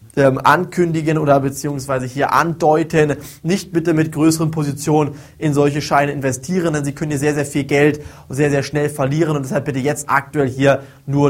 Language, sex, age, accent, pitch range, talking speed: German, male, 20-39, German, 145-170 Hz, 175 wpm